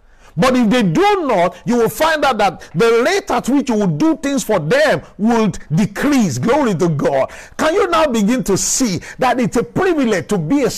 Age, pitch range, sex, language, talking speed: 50-69, 210-295 Hz, male, English, 210 wpm